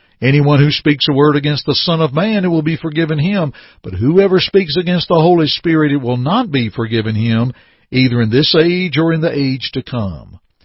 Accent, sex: American, male